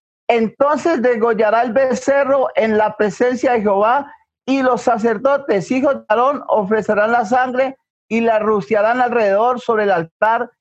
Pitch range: 195-255 Hz